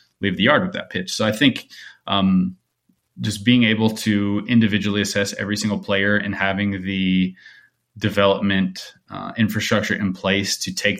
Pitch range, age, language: 95-105 Hz, 20-39, English